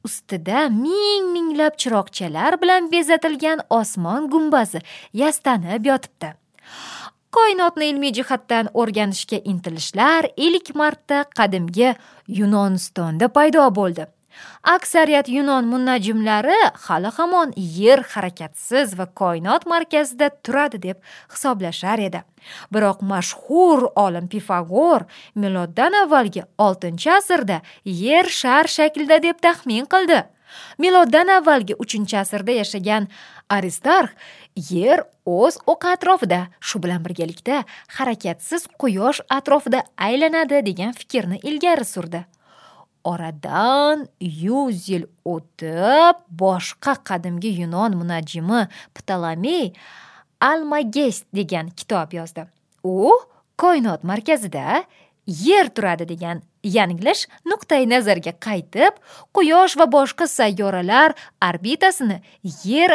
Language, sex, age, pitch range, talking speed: English, female, 20-39, 185-305 Hz, 90 wpm